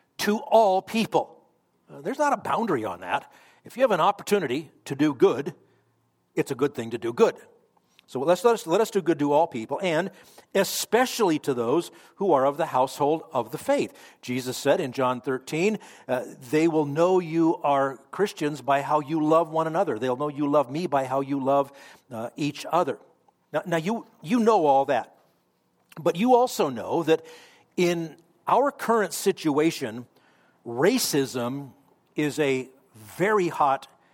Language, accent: English, American